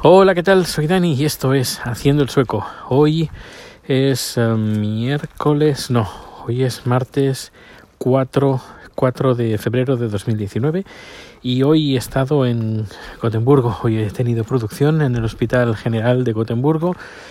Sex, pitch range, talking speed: male, 115-140 Hz, 140 wpm